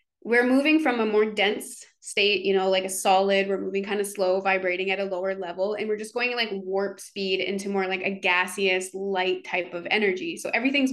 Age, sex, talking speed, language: 20-39, female, 220 wpm, English